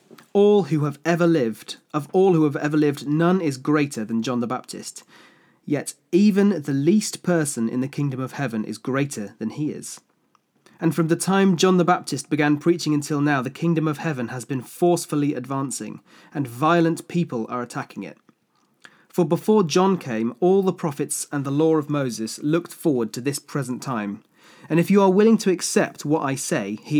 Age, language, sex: 30-49, English, male